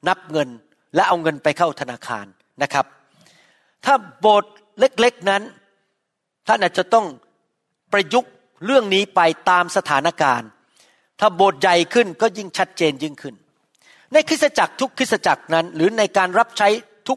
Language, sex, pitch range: Thai, male, 170-225 Hz